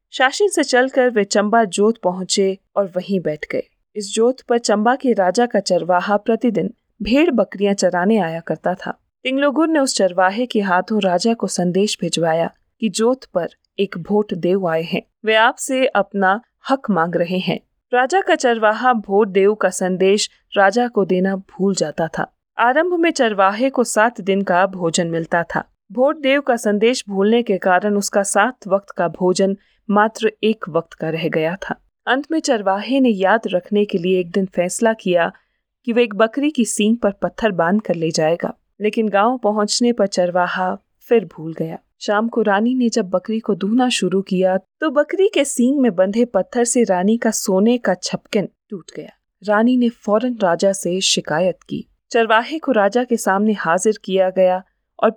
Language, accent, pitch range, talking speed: Hindi, native, 185-240 Hz, 180 wpm